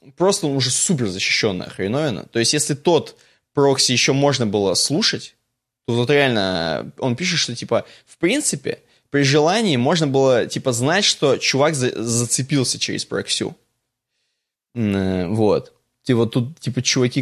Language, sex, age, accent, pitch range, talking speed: Russian, male, 20-39, native, 110-145 Hz, 145 wpm